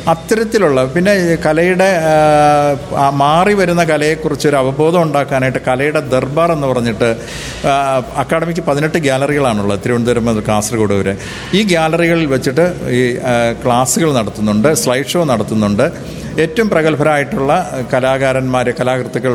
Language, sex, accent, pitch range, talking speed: Malayalam, male, native, 125-160 Hz, 95 wpm